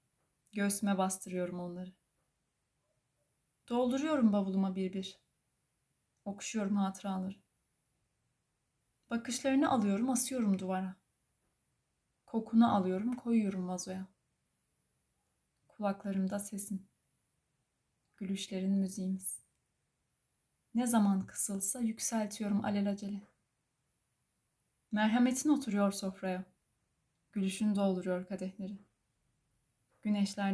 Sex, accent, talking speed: female, native, 65 wpm